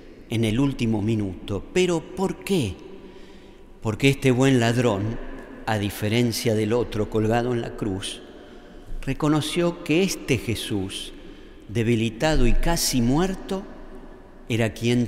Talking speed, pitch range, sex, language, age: 115 wpm, 110-135 Hz, male, Spanish, 50-69